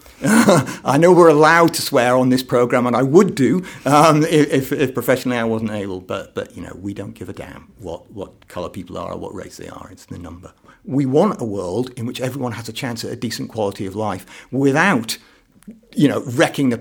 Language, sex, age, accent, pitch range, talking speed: English, male, 50-69, British, 105-135 Hz, 225 wpm